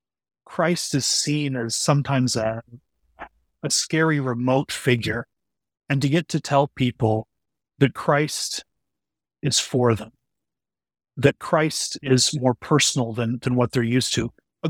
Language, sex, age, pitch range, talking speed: English, male, 30-49, 125-160 Hz, 135 wpm